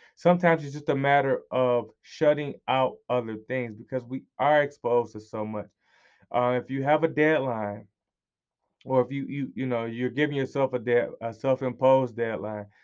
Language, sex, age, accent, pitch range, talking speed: English, male, 20-39, American, 120-145 Hz, 175 wpm